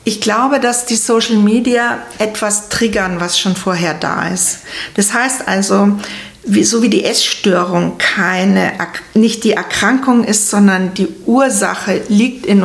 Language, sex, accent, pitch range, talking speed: German, female, German, 190-230 Hz, 145 wpm